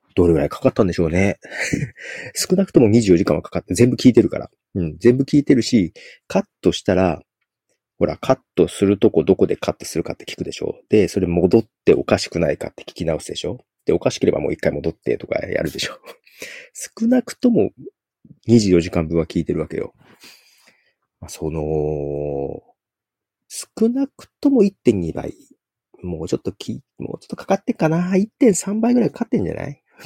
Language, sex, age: Japanese, male, 40-59